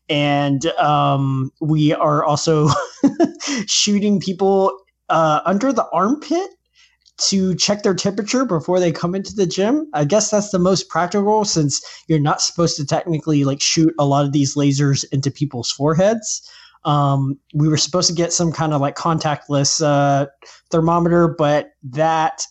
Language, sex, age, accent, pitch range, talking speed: English, male, 20-39, American, 140-175 Hz, 155 wpm